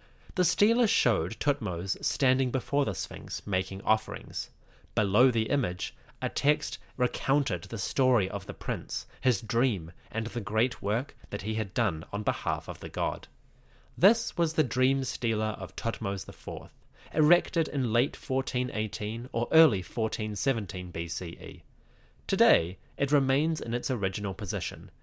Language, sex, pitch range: English, male, 100-135 Hz